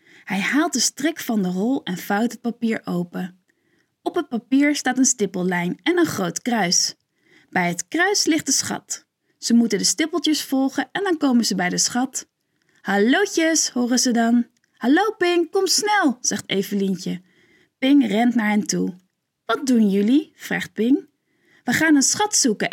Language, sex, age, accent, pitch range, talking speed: Dutch, female, 20-39, Dutch, 210-310 Hz, 170 wpm